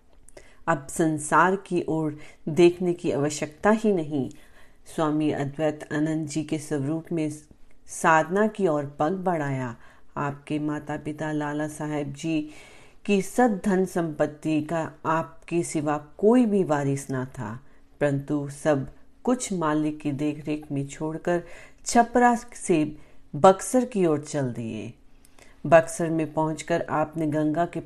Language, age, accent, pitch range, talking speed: Hindi, 40-59, native, 145-170 Hz, 125 wpm